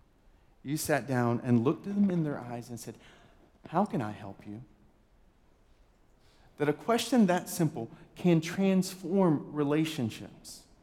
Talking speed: 140 wpm